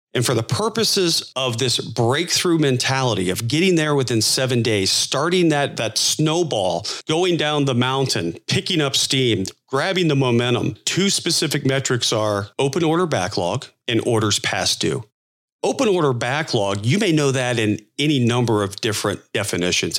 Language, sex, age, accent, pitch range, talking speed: English, male, 40-59, American, 110-145 Hz, 155 wpm